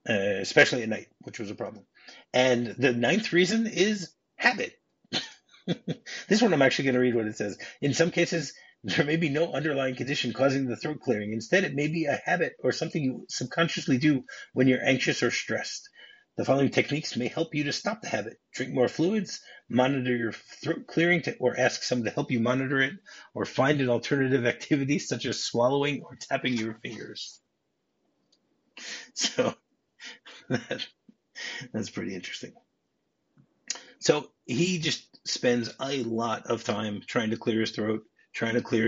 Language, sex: English, male